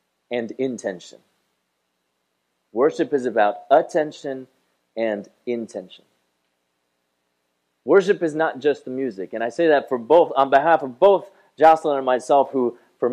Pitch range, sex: 95-150 Hz, male